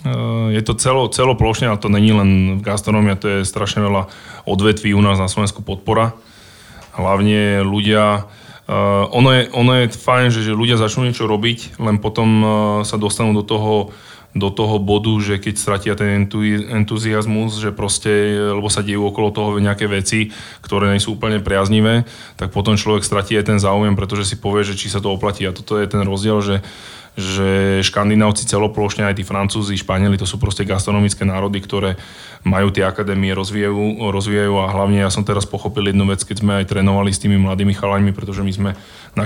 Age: 20-39